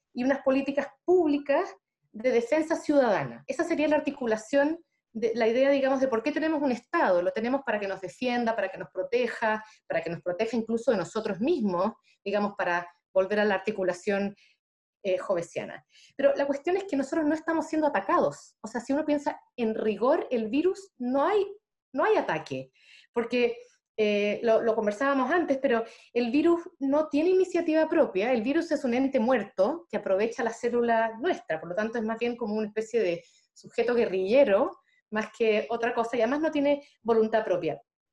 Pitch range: 215-290 Hz